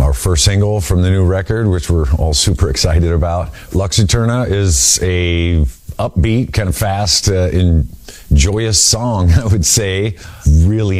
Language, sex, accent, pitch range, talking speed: English, male, American, 75-90 Hz, 160 wpm